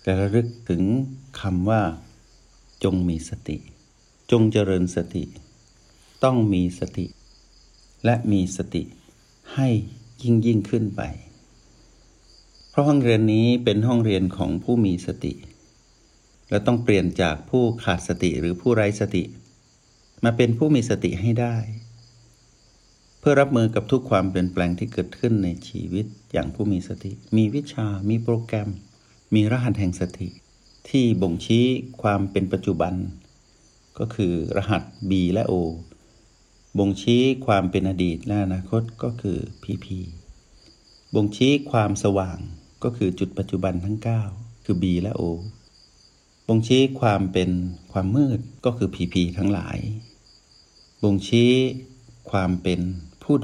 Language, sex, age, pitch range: Thai, male, 60-79, 90-115 Hz